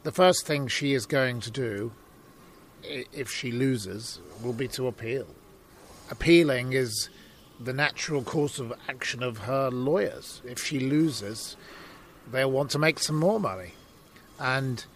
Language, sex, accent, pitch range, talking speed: English, male, British, 120-150 Hz, 145 wpm